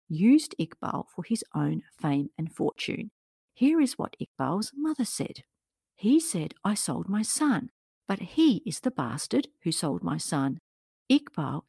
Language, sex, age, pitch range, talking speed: English, female, 50-69, 165-255 Hz, 155 wpm